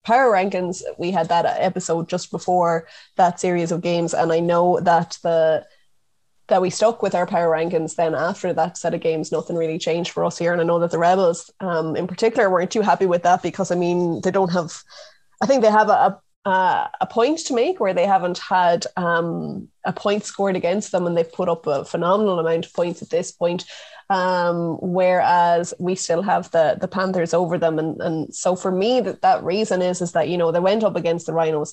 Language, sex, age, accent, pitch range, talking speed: English, female, 20-39, Irish, 165-190 Hz, 220 wpm